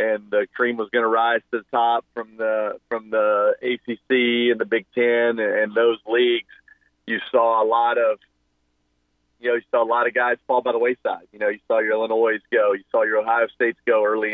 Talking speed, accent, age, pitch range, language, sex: 220 wpm, American, 30-49, 95-130 Hz, English, male